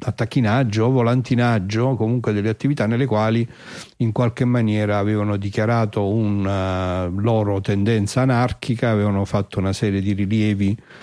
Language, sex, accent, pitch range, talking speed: Italian, male, native, 105-130 Hz, 120 wpm